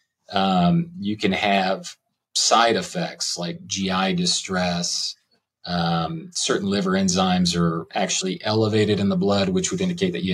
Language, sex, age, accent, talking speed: English, male, 40-59, American, 140 wpm